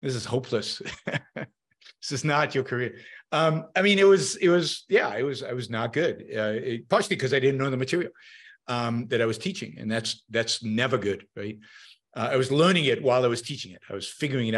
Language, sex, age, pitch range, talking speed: English, male, 50-69, 115-155 Hz, 225 wpm